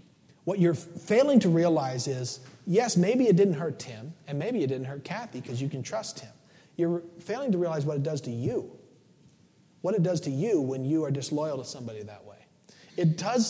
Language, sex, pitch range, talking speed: English, male, 135-175 Hz, 210 wpm